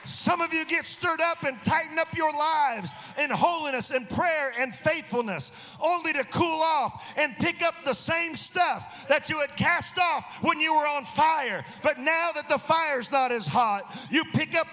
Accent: American